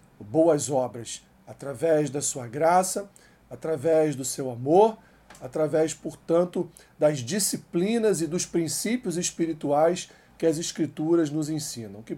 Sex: male